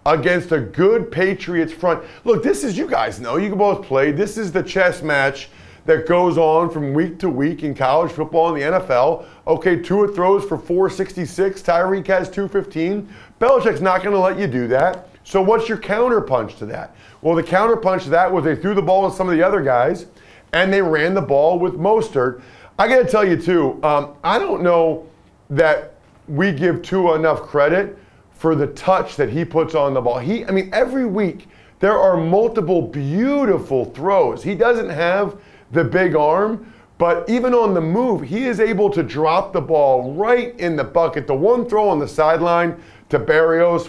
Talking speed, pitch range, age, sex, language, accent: 195 wpm, 160-200 Hz, 40-59, male, English, American